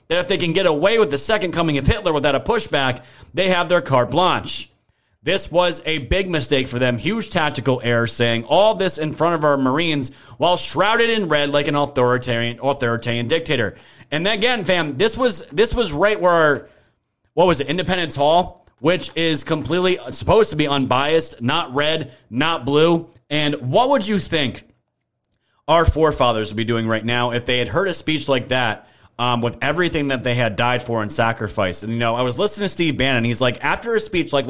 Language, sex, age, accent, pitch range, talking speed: English, male, 30-49, American, 120-170 Hz, 205 wpm